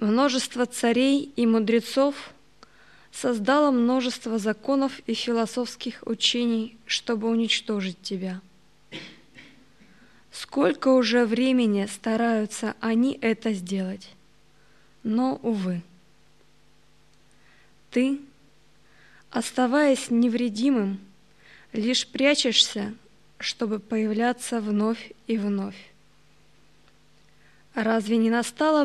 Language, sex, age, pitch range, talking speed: Russian, female, 20-39, 210-255 Hz, 75 wpm